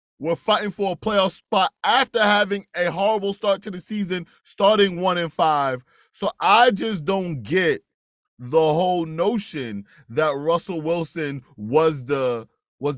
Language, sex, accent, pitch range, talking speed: English, male, American, 130-200 Hz, 150 wpm